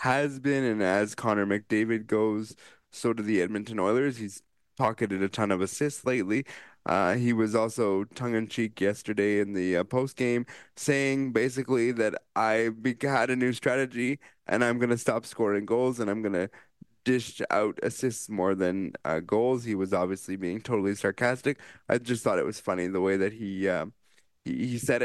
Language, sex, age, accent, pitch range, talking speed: English, male, 20-39, American, 110-145 Hz, 180 wpm